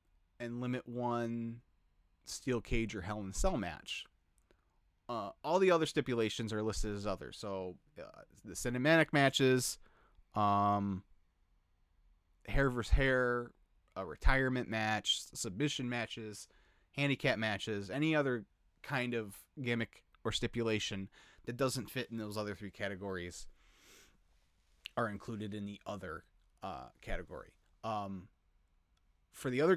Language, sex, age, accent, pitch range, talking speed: English, male, 30-49, American, 95-120 Hz, 125 wpm